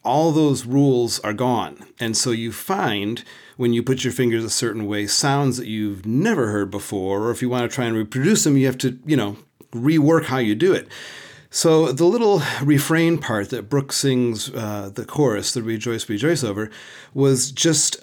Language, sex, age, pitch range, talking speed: English, male, 40-59, 110-140 Hz, 195 wpm